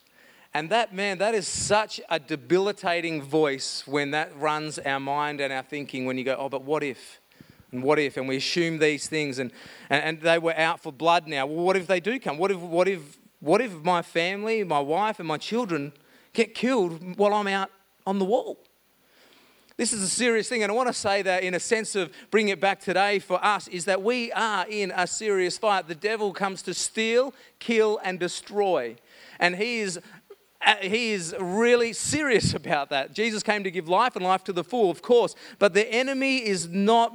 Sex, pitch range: male, 170-220 Hz